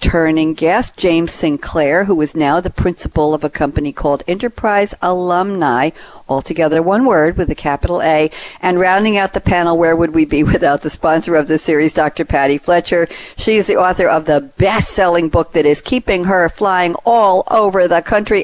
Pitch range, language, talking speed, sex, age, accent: 150-190 Hz, English, 185 wpm, female, 50-69, American